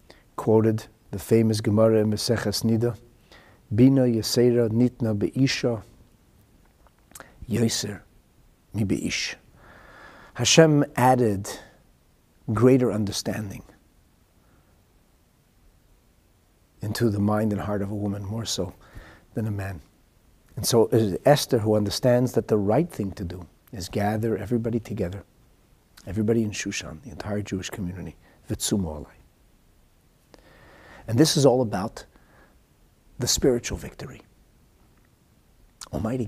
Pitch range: 95-115 Hz